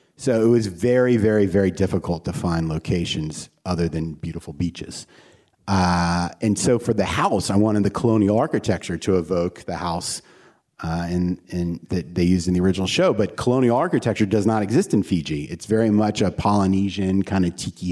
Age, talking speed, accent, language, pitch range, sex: 30-49, 180 wpm, American, English, 90-110 Hz, male